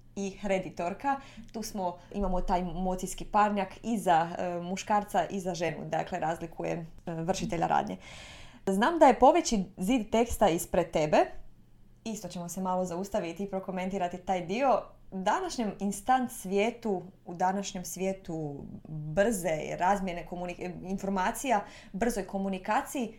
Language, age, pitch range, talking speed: Croatian, 20-39, 180-215 Hz, 130 wpm